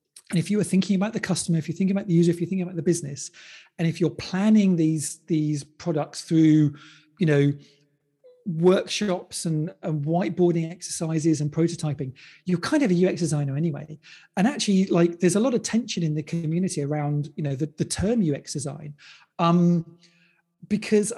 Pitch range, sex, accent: 155-190 Hz, male, British